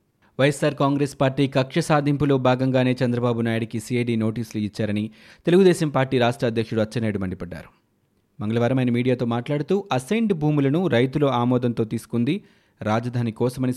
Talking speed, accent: 120 wpm, native